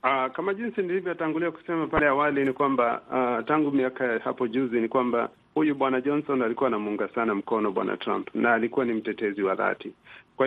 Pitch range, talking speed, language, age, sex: 115-140 Hz, 190 wpm, Swahili, 50-69, male